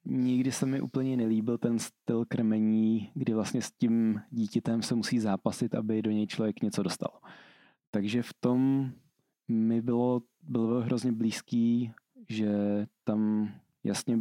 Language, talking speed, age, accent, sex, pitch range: Czech, 140 wpm, 20-39, native, male, 105-120 Hz